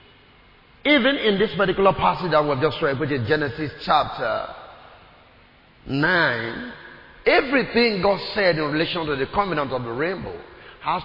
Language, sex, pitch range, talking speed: English, male, 145-215 Hz, 140 wpm